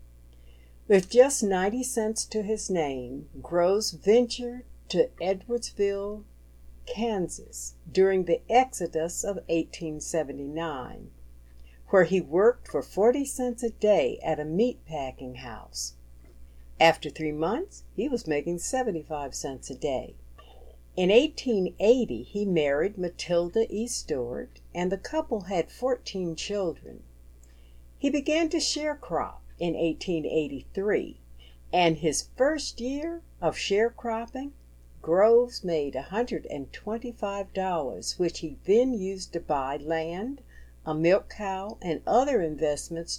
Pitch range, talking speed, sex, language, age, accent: 135-225 Hz, 115 wpm, female, English, 60-79, American